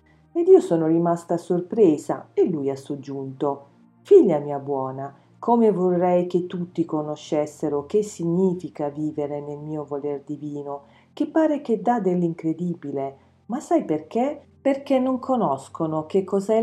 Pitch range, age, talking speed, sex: 150-210 Hz, 40-59, 135 wpm, female